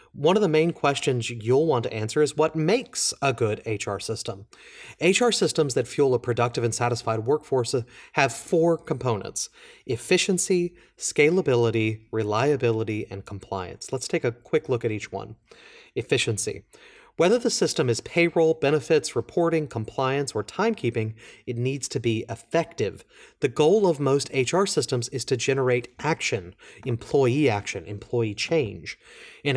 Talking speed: 145 wpm